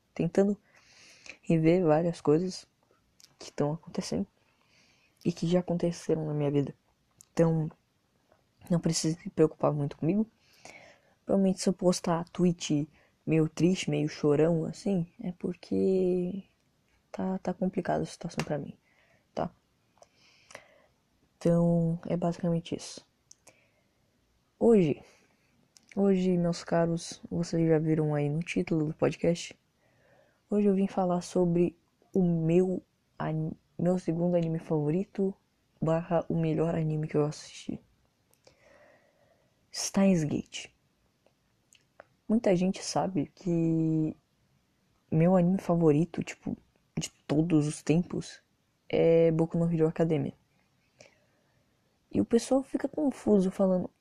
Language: Portuguese